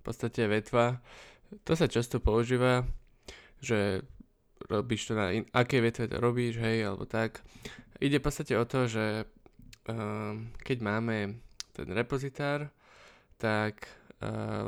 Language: Slovak